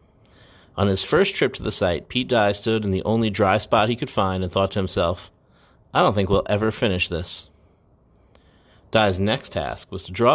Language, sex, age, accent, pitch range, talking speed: English, male, 30-49, American, 95-110 Hz, 205 wpm